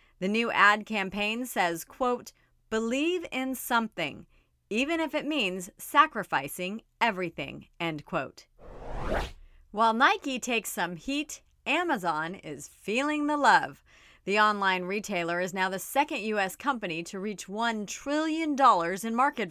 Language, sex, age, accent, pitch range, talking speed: English, female, 30-49, American, 185-260 Hz, 130 wpm